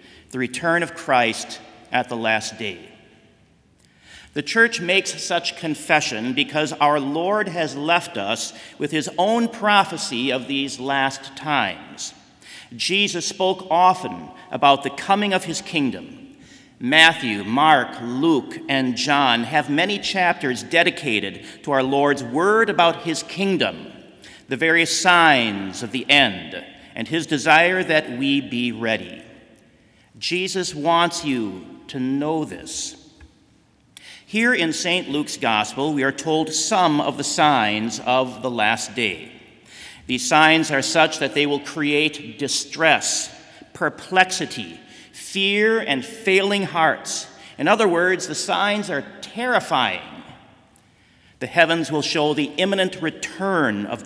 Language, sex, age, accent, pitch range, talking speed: English, male, 50-69, American, 135-185 Hz, 130 wpm